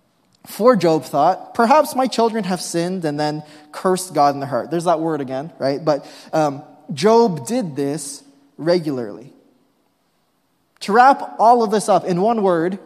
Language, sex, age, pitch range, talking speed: English, male, 20-39, 150-205 Hz, 165 wpm